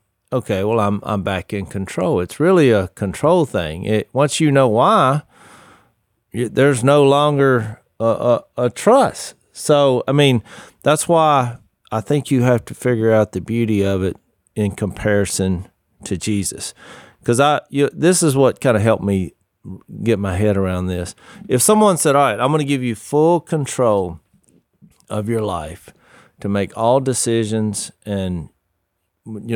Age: 40-59